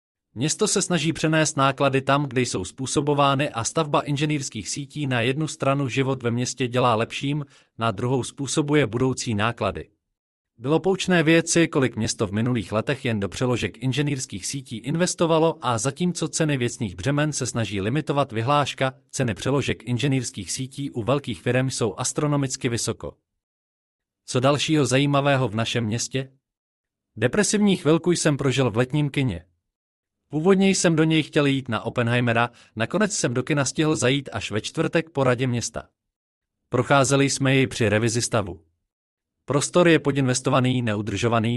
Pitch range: 115-150 Hz